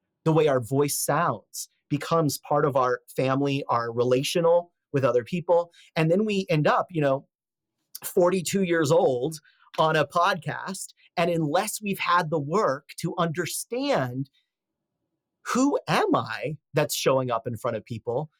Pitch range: 125-165 Hz